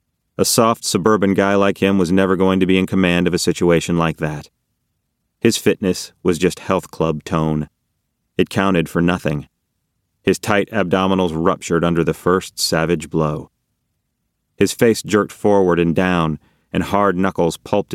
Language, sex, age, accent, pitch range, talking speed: English, male, 30-49, American, 85-100 Hz, 160 wpm